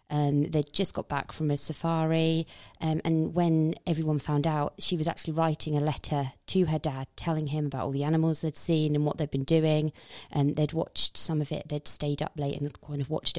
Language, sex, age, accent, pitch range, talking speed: English, female, 30-49, British, 140-160 Hz, 230 wpm